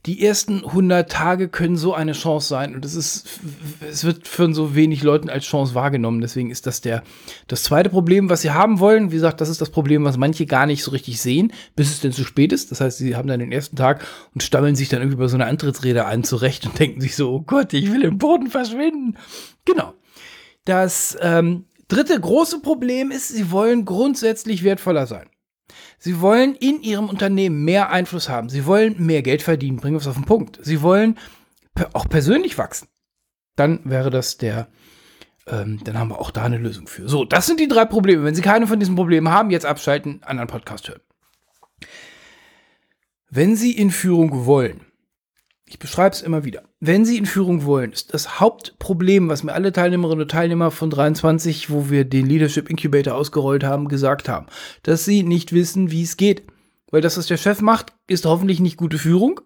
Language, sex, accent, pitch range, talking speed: German, male, German, 140-190 Hz, 205 wpm